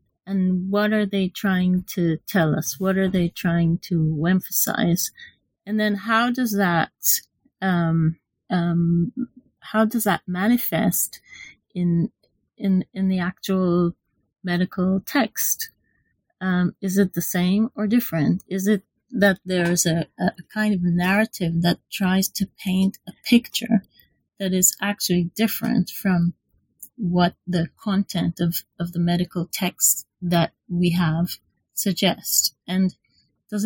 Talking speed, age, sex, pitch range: 130 wpm, 30-49, female, 175-220 Hz